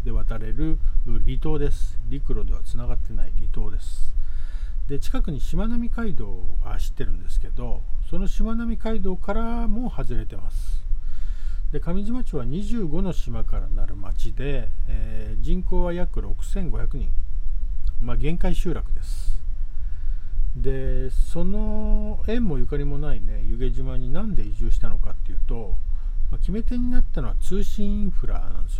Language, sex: Japanese, male